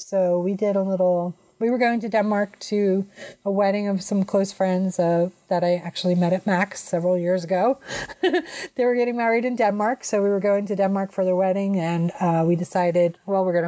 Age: 30-49